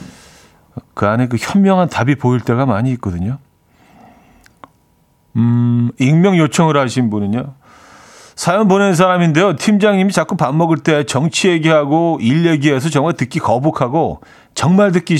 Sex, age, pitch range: male, 40-59, 115-155 Hz